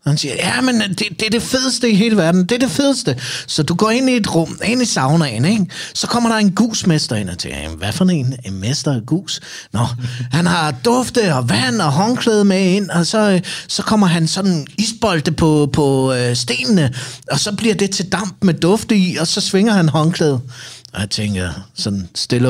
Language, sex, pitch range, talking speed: Danish, male, 130-180 Hz, 220 wpm